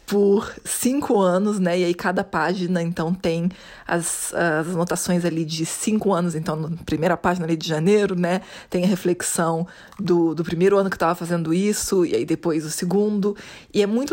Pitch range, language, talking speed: 175-225 Hz, Portuguese, 185 wpm